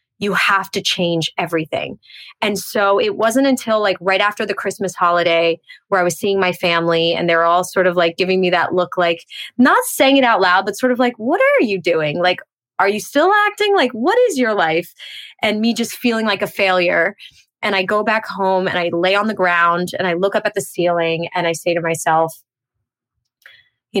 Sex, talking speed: female, 220 wpm